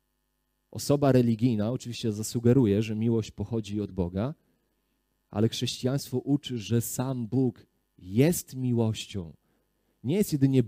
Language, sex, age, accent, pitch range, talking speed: Polish, male, 40-59, native, 110-145 Hz, 110 wpm